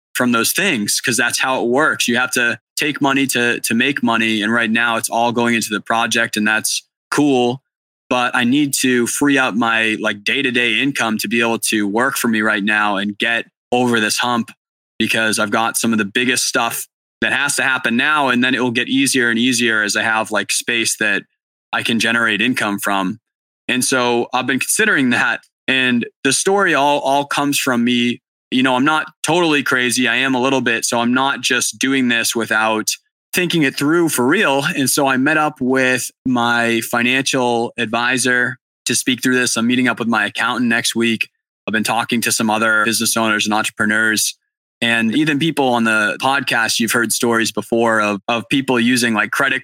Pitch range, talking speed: 115-130 Hz, 205 wpm